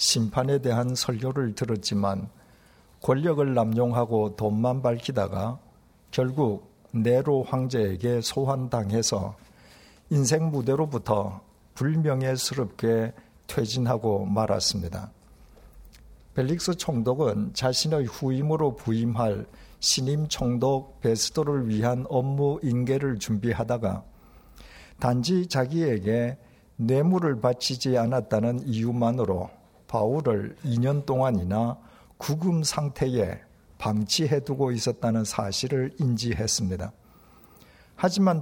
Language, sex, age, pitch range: Korean, male, 50-69, 110-140 Hz